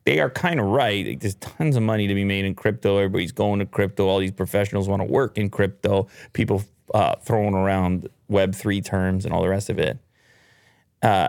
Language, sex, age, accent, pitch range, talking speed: English, male, 30-49, American, 100-135 Hz, 205 wpm